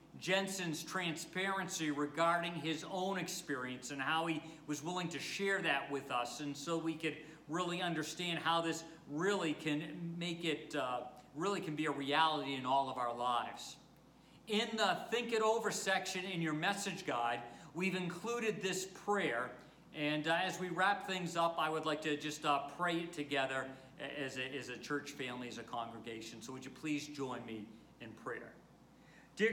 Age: 50-69